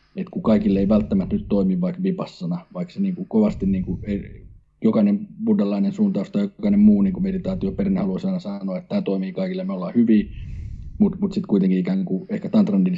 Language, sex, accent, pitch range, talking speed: Finnish, male, native, 175-205 Hz, 180 wpm